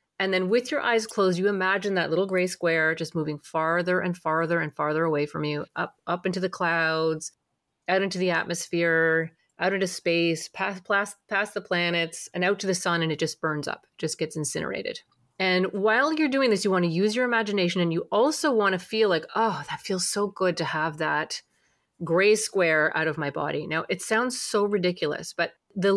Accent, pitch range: American, 170-220 Hz